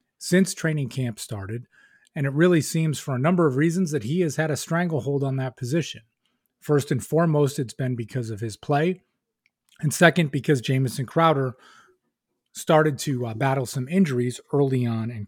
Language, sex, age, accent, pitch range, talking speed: English, male, 30-49, American, 125-155 Hz, 175 wpm